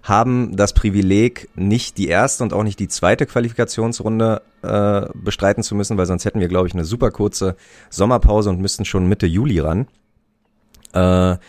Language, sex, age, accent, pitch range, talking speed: German, male, 30-49, German, 90-110 Hz, 170 wpm